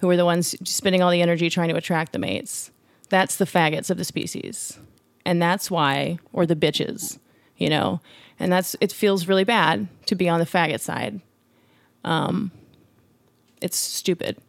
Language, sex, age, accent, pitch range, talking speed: English, female, 30-49, American, 175-215 Hz, 175 wpm